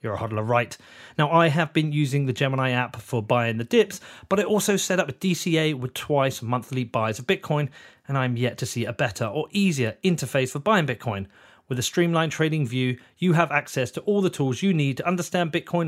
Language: English